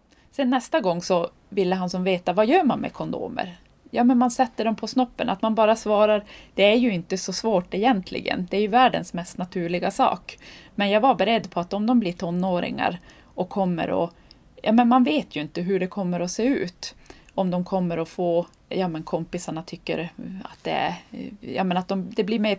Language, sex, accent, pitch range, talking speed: Swedish, female, native, 175-220 Hz, 205 wpm